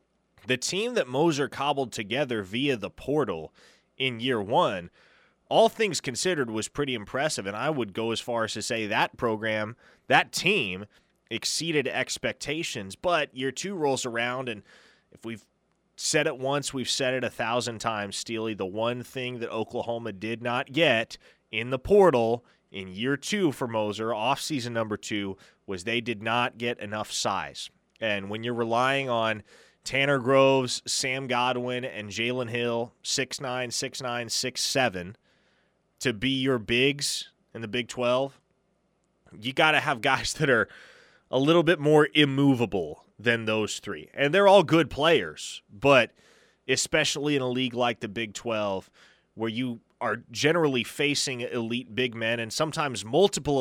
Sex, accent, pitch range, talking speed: male, American, 115-140 Hz, 160 wpm